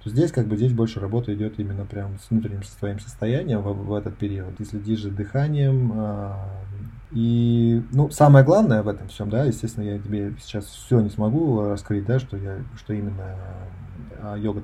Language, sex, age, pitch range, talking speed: Russian, male, 20-39, 100-115 Hz, 190 wpm